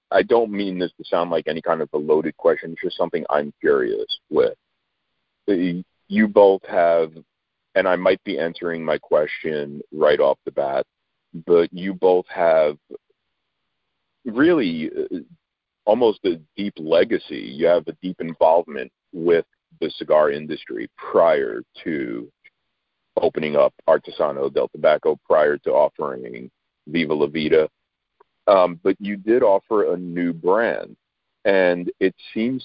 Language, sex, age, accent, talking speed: English, male, 40-59, American, 140 wpm